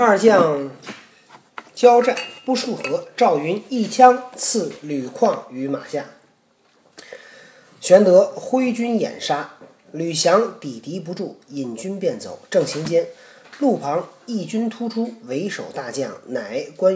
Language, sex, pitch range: Chinese, male, 170-255 Hz